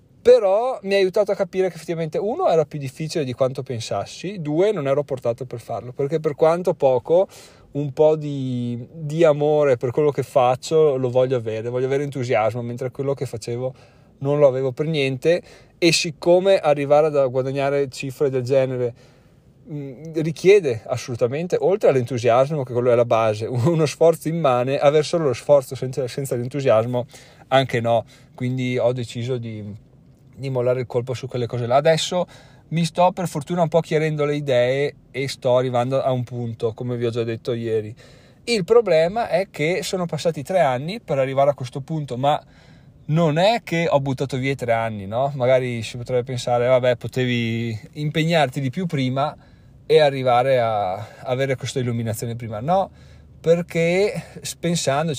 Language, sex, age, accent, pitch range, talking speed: Italian, male, 30-49, native, 125-155 Hz, 170 wpm